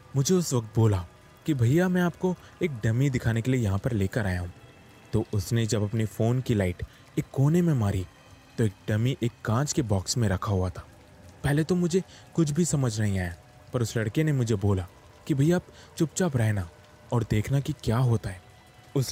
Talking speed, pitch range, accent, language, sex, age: 205 wpm, 100-135 Hz, Indian, English, male, 20-39